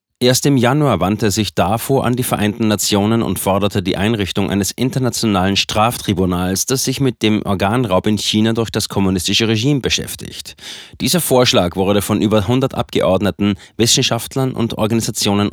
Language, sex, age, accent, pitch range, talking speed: German, male, 30-49, German, 95-120 Hz, 150 wpm